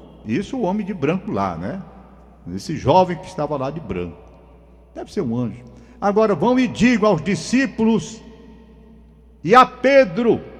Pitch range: 185-235 Hz